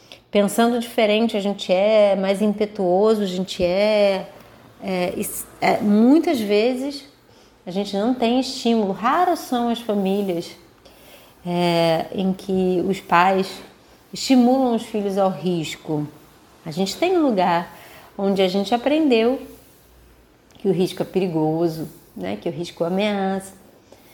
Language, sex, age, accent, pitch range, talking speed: Portuguese, female, 30-49, Brazilian, 190-255 Hz, 130 wpm